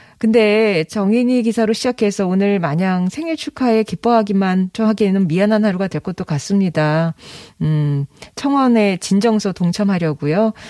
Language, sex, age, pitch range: Korean, female, 40-59, 165-240 Hz